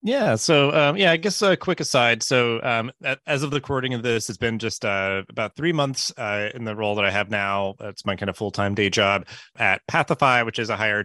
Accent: American